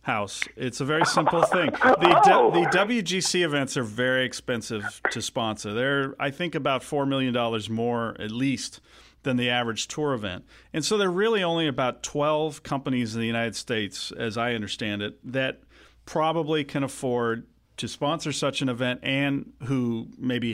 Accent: American